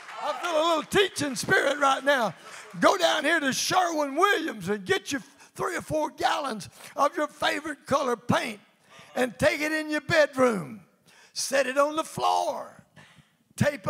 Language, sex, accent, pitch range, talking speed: English, male, American, 285-345 Hz, 160 wpm